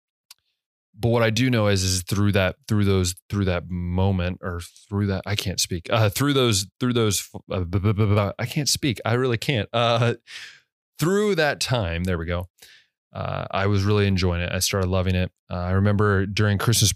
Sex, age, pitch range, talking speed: male, 20-39, 95-110 Hz, 190 wpm